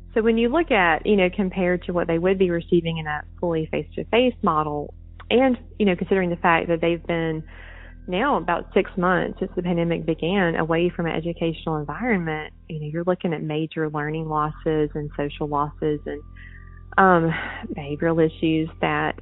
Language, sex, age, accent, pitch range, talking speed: English, female, 20-39, American, 155-190 Hz, 180 wpm